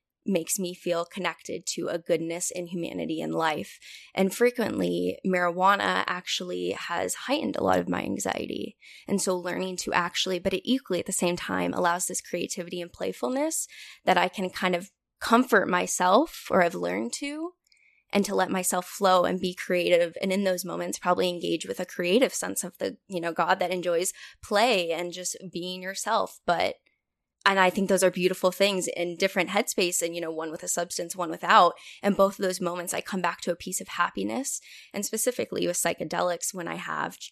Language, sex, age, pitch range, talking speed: English, female, 10-29, 175-195 Hz, 190 wpm